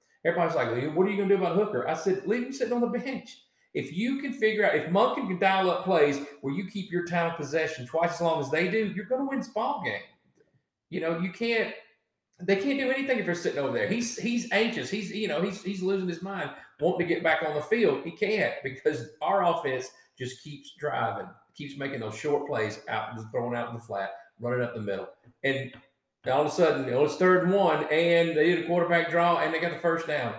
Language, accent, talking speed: English, American, 255 wpm